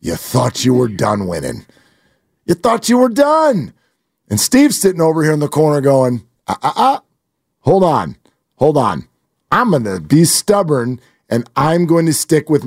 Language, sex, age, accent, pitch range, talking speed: English, male, 50-69, American, 135-205 Hz, 180 wpm